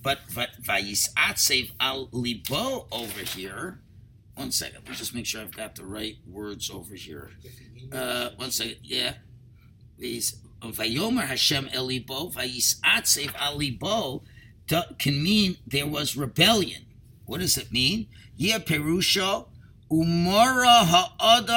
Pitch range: 120-195 Hz